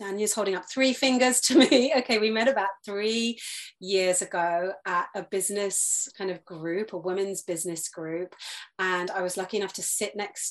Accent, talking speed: British, 185 wpm